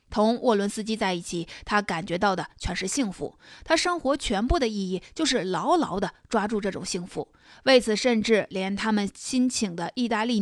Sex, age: female, 20-39